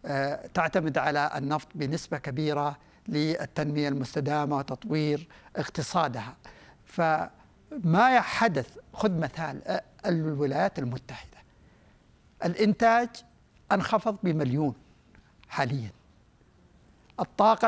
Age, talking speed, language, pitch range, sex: 60-79, 70 wpm, Arabic, 150-205 Hz, male